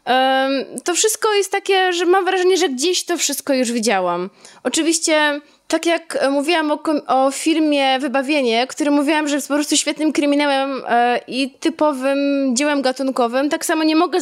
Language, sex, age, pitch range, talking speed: Polish, female, 20-39, 255-320 Hz, 155 wpm